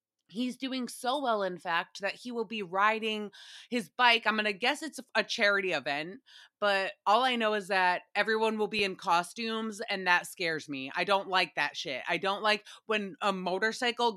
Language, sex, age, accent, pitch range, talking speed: English, female, 20-39, American, 180-220 Hz, 200 wpm